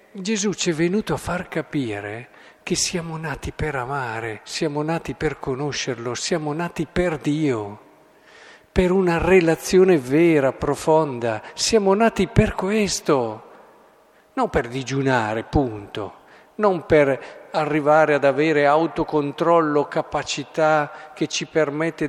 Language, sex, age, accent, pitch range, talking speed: Italian, male, 50-69, native, 140-170 Hz, 115 wpm